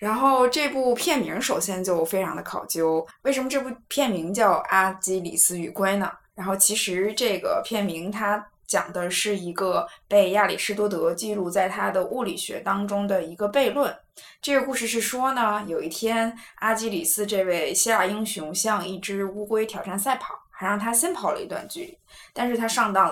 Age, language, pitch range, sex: 20-39, Chinese, 185-225 Hz, female